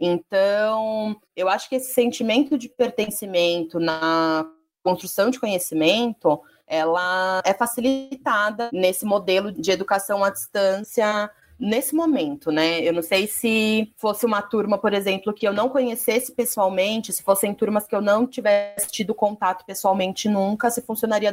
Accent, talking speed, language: Brazilian, 145 wpm, English